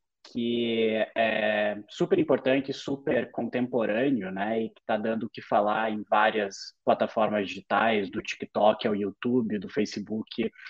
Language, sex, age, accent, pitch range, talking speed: Portuguese, male, 20-39, Brazilian, 110-125 Hz, 135 wpm